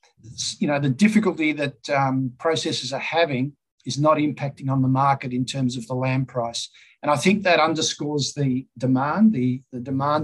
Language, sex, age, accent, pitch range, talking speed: English, male, 50-69, Australian, 130-145 Hz, 180 wpm